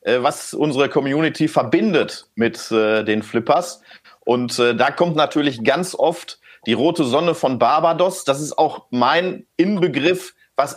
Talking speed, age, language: 145 wpm, 40-59, German